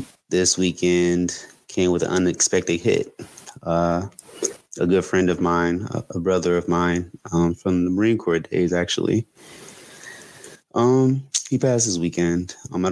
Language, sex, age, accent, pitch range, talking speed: English, male, 20-39, American, 85-95 Hz, 150 wpm